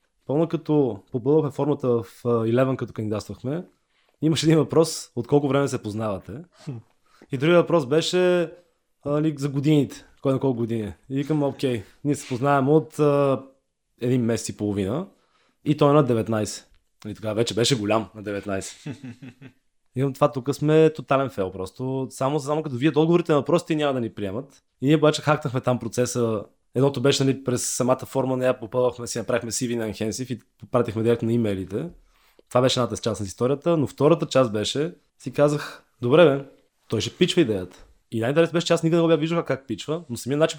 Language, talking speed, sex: Bulgarian, 190 wpm, male